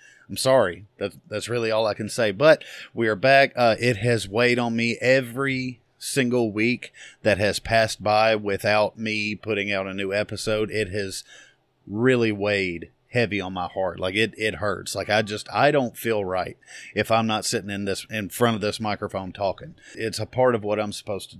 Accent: American